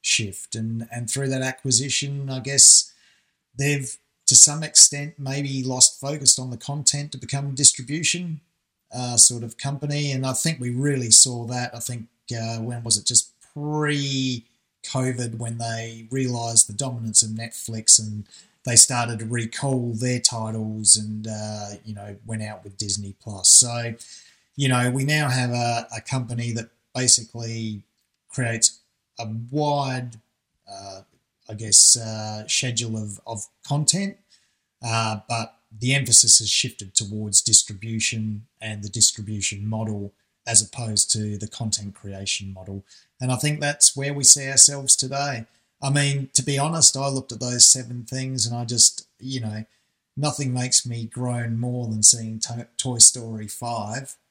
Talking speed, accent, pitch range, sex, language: 155 wpm, Australian, 110-135 Hz, male, English